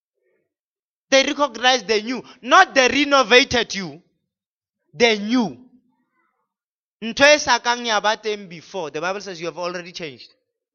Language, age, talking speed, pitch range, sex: English, 30-49, 100 wpm, 160-235 Hz, male